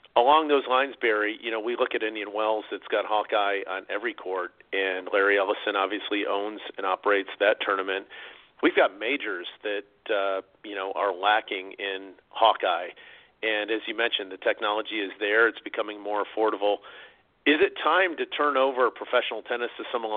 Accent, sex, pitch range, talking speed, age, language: American, male, 100-115 Hz, 175 wpm, 40-59, English